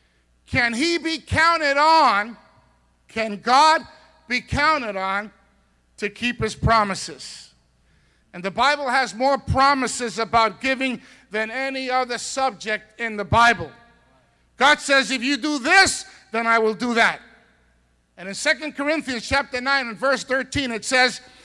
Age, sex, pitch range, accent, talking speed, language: 50-69, male, 215-275 Hz, American, 145 wpm, English